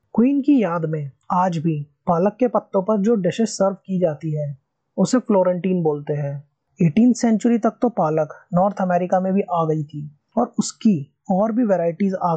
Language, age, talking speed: Hindi, 20-39, 185 wpm